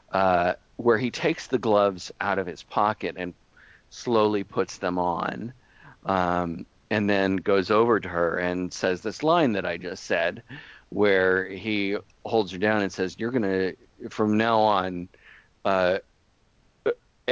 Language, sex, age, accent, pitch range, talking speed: English, male, 50-69, American, 90-110 Hz, 150 wpm